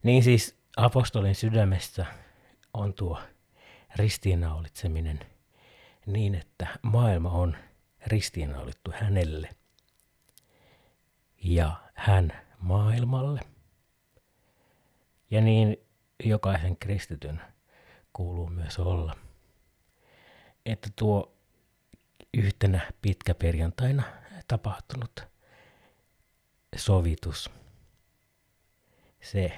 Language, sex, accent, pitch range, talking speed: Finnish, male, native, 90-115 Hz, 60 wpm